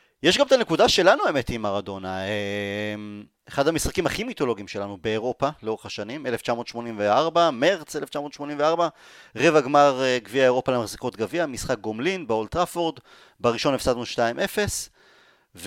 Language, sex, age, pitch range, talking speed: Hebrew, male, 30-49, 115-145 Hz, 120 wpm